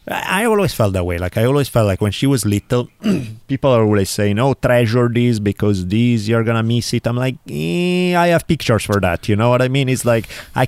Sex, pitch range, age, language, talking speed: male, 95-120 Hz, 30-49, English, 245 wpm